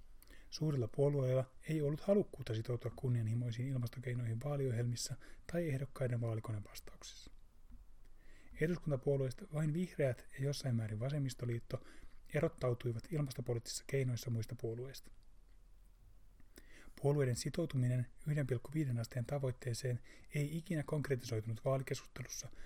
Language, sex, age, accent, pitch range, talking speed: Finnish, male, 30-49, native, 115-140 Hz, 85 wpm